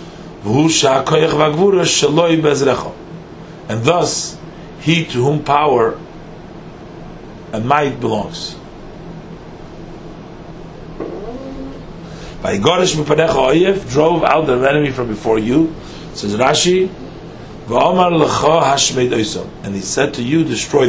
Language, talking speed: English, 75 wpm